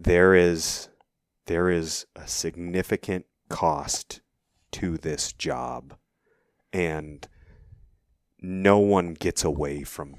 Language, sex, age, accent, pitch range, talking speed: English, male, 30-49, American, 80-90 Hz, 95 wpm